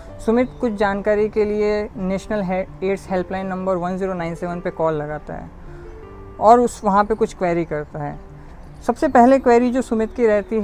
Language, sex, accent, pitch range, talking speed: Hindi, female, native, 175-215 Hz, 165 wpm